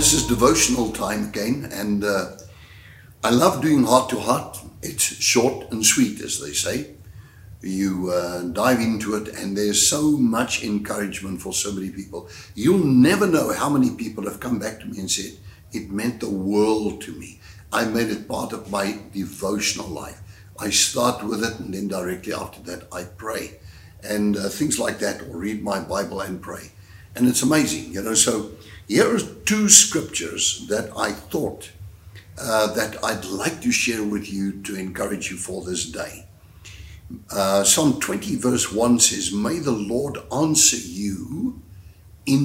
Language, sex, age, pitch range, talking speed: English, male, 60-79, 95-115 Hz, 170 wpm